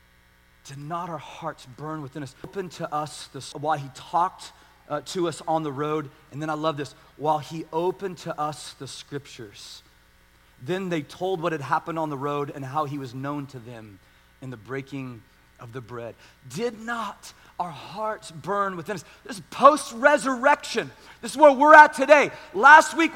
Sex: male